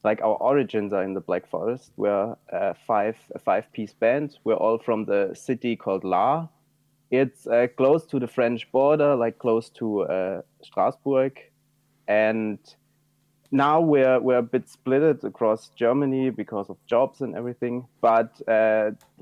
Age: 30-49